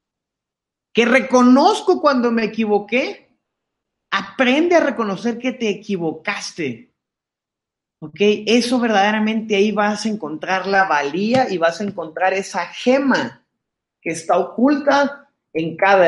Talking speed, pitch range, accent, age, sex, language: 115 wpm, 155-230 Hz, Mexican, 30-49, male, English